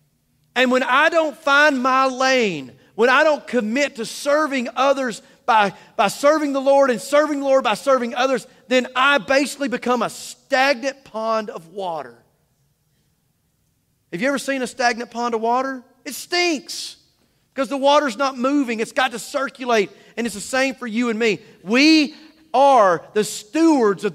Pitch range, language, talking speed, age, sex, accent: 180-260 Hz, English, 170 wpm, 40-59, male, American